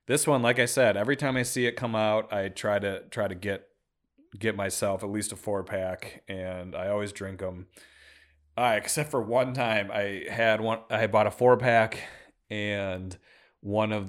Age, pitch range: 30-49, 90-110 Hz